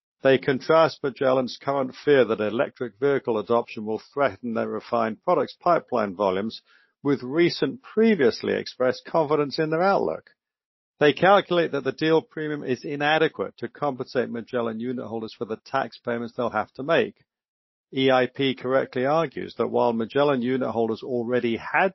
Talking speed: 150 wpm